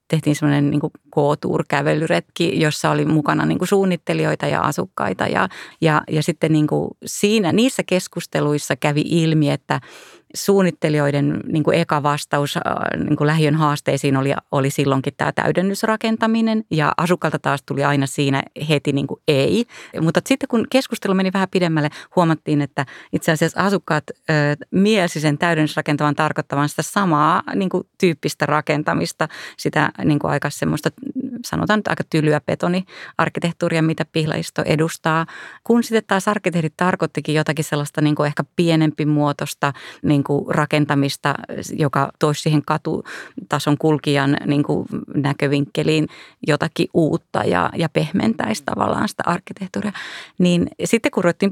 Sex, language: female, Finnish